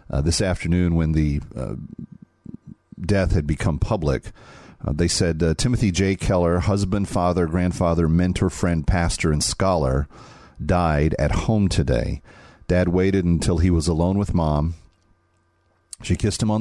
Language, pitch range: English, 75-90 Hz